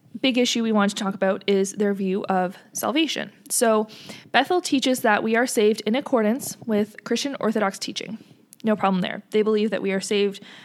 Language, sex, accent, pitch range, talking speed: English, female, American, 195-235 Hz, 190 wpm